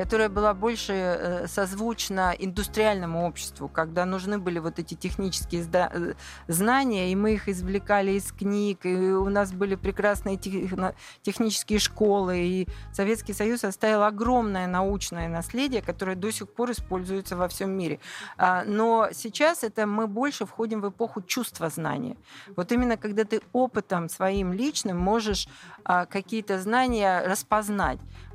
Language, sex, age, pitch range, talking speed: Russian, female, 40-59, 180-220 Hz, 135 wpm